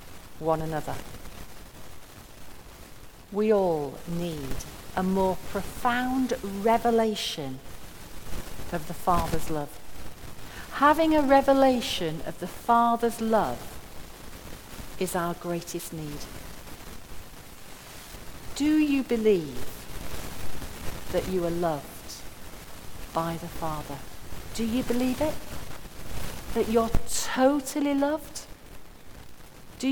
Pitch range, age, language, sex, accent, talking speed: 160-255 Hz, 50-69, English, female, British, 85 wpm